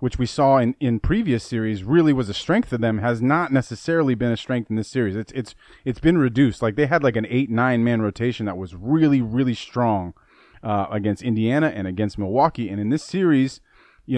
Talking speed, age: 220 wpm, 30-49